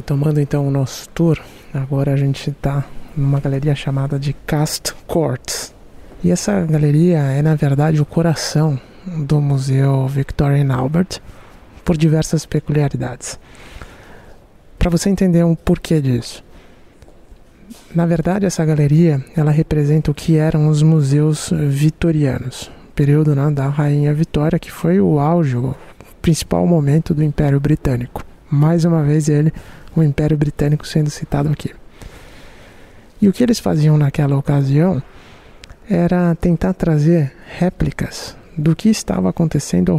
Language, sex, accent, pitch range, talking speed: Portuguese, male, Brazilian, 140-170 Hz, 140 wpm